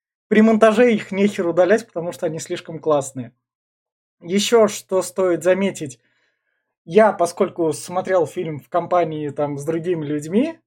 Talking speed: 135 wpm